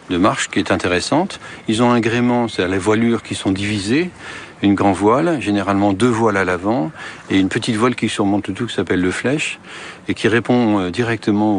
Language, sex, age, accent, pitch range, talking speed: French, male, 60-79, French, 95-115 Hz, 195 wpm